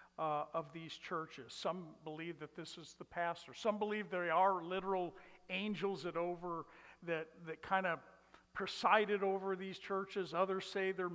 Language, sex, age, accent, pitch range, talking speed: English, male, 50-69, American, 170-215 Hz, 155 wpm